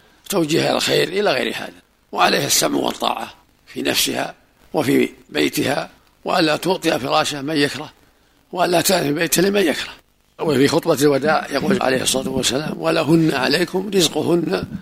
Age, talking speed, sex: 50-69, 130 wpm, male